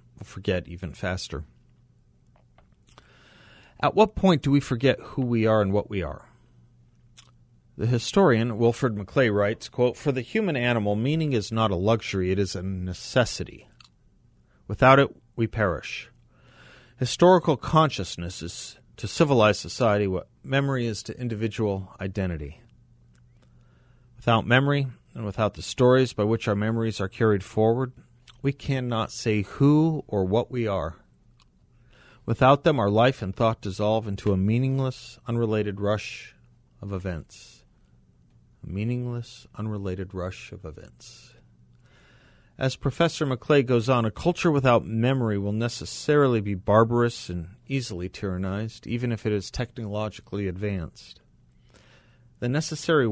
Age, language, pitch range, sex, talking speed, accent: 40-59, English, 95-125 Hz, male, 130 wpm, American